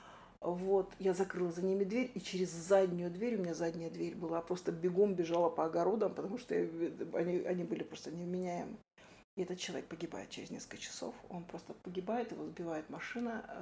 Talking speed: 175 wpm